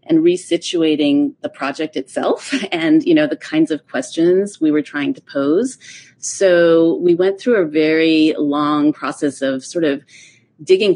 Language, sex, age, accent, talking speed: English, female, 30-49, American, 160 wpm